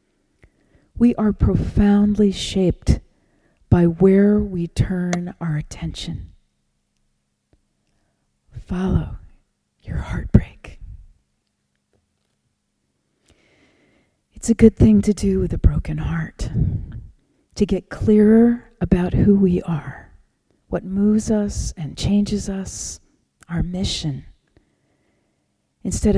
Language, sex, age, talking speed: English, female, 40-59, 90 wpm